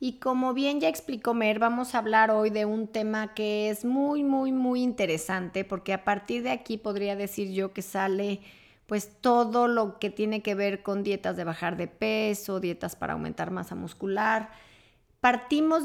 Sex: female